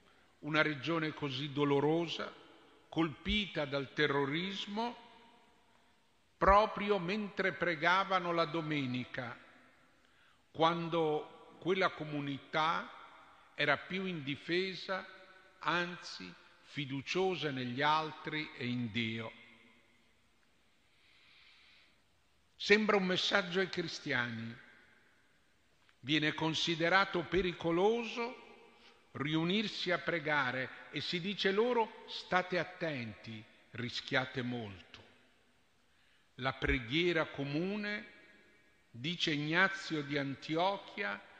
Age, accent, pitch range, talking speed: 50-69, native, 130-185 Hz, 75 wpm